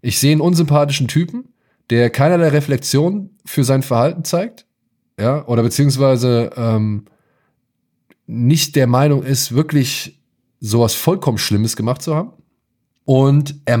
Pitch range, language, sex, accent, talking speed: 115-155 Hz, German, male, German, 125 wpm